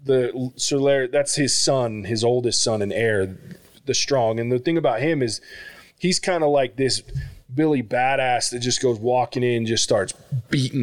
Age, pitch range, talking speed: 20-39, 115-145 Hz, 190 wpm